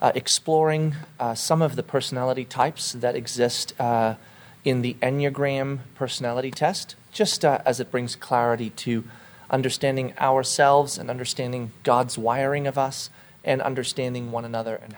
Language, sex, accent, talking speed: English, male, American, 145 wpm